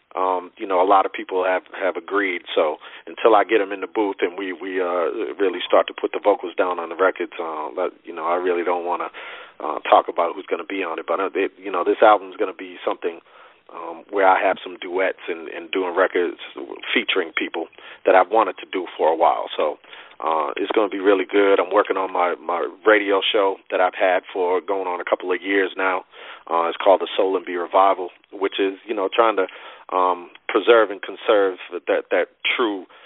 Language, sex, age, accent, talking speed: English, male, 40-59, American, 235 wpm